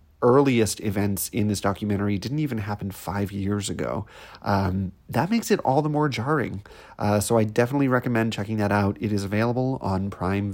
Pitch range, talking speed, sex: 100-120 Hz, 180 wpm, male